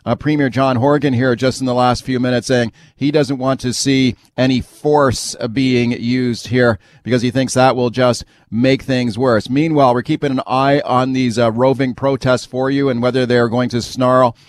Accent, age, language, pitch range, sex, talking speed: American, 40-59, English, 125-150 Hz, male, 205 wpm